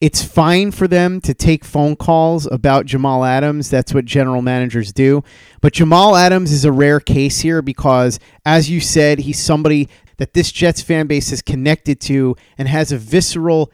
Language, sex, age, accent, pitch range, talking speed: English, male, 30-49, American, 135-170 Hz, 185 wpm